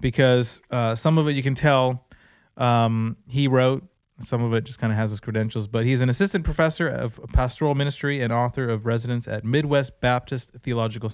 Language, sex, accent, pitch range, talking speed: English, male, American, 120-145 Hz, 195 wpm